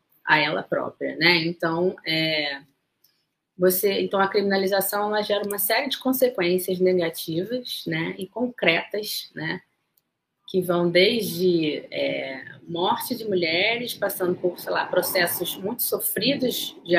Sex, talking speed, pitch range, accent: female, 125 wpm, 155-210 Hz, Brazilian